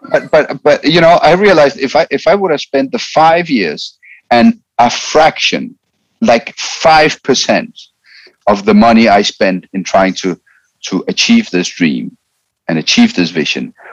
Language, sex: English, male